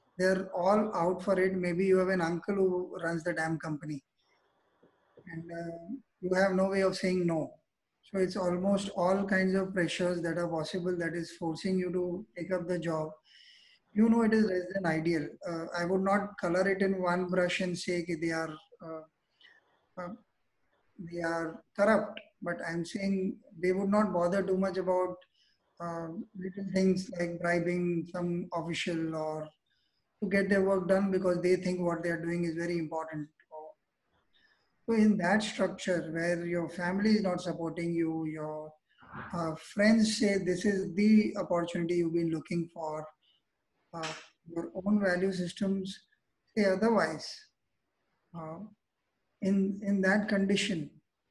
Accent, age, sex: Indian, 20-39, male